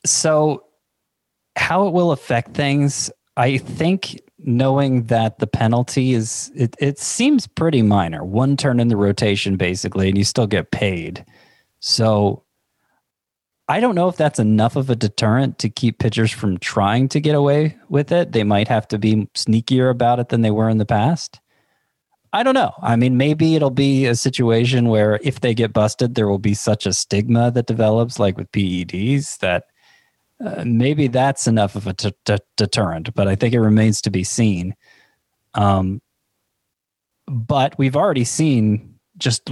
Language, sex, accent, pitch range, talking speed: English, male, American, 105-135 Hz, 170 wpm